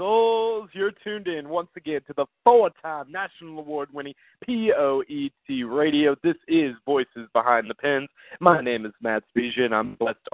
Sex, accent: male, American